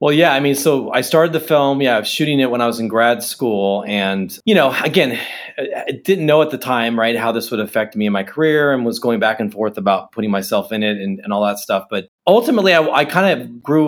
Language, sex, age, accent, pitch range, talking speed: English, male, 30-49, American, 115-150 Hz, 270 wpm